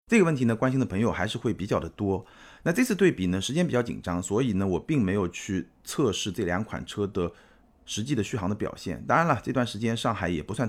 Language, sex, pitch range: Chinese, male, 90-140 Hz